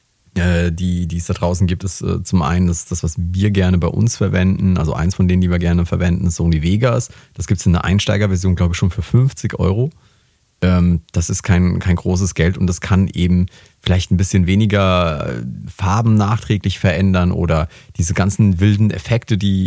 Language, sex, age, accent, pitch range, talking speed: German, male, 30-49, German, 90-105 Hz, 190 wpm